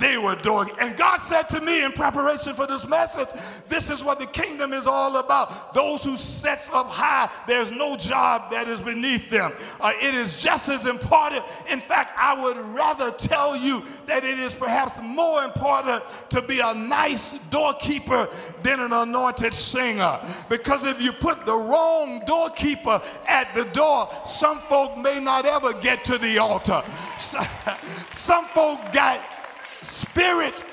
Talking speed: 165 wpm